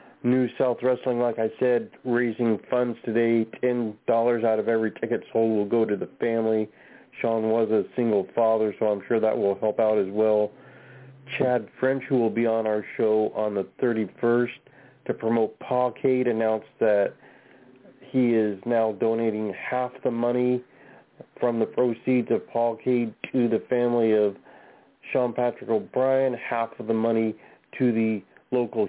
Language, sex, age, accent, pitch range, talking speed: English, male, 40-59, American, 110-125 Hz, 160 wpm